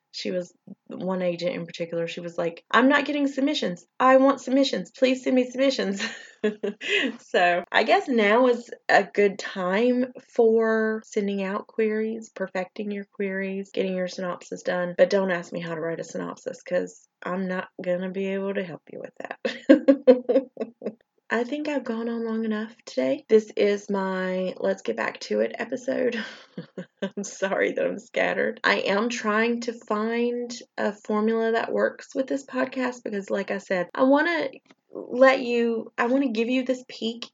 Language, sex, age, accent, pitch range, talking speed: English, female, 30-49, American, 195-255 Hz, 175 wpm